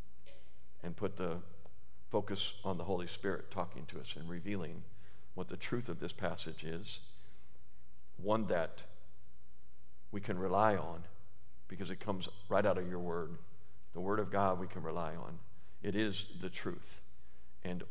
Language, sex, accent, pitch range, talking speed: English, male, American, 85-105 Hz, 160 wpm